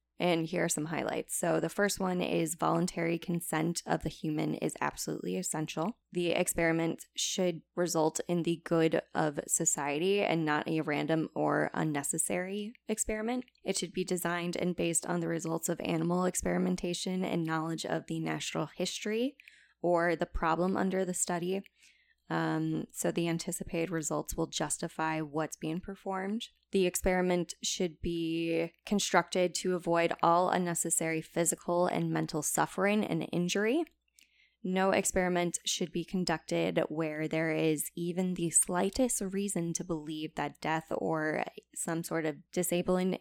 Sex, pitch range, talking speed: female, 160-185 Hz, 145 wpm